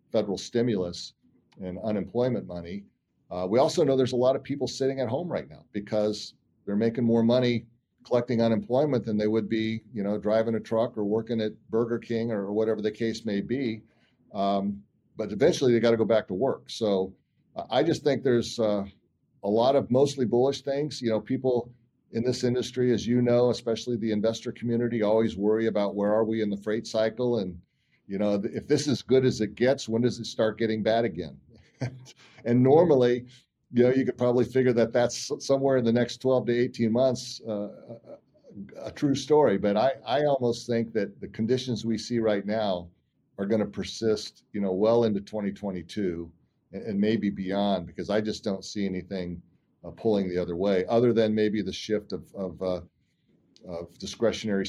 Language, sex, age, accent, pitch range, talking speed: English, male, 40-59, American, 100-120 Hz, 195 wpm